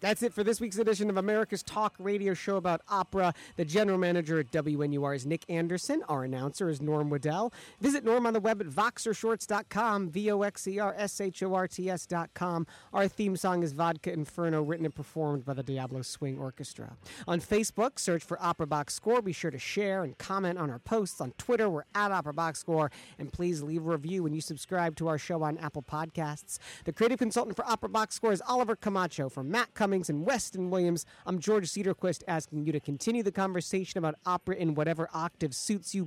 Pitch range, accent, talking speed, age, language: 155-205 Hz, American, 195 wpm, 40-59, English